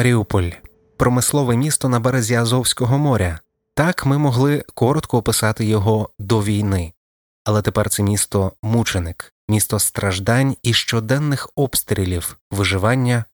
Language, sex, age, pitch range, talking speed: Ukrainian, male, 20-39, 100-125 Hz, 115 wpm